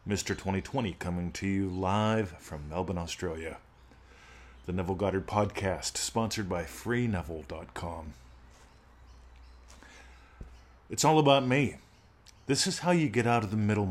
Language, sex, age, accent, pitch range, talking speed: English, male, 40-59, American, 85-115 Hz, 125 wpm